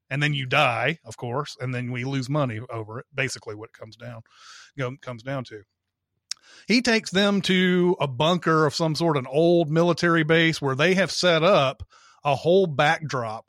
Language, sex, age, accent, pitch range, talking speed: English, male, 30-49, American, 125-160 Hz, 195 wpm